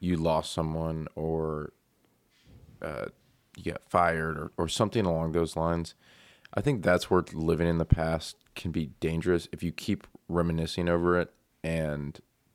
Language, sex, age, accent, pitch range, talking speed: English, male, 20-39, American, 80-95 Hz, 155 wpm